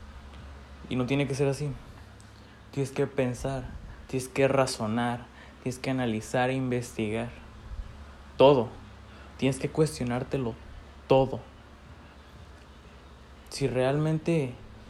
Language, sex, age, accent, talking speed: Spanish, male, 20-39, Mexican, 95 wpm